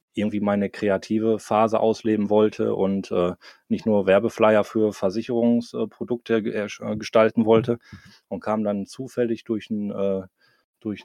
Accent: German